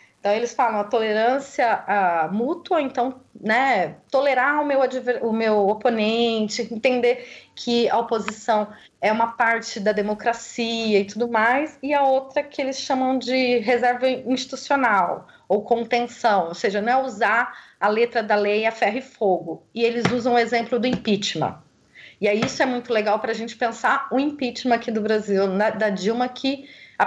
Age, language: 30-49, Portuguese